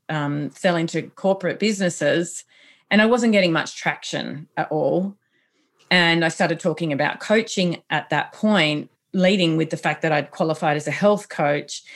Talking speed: 165 wpm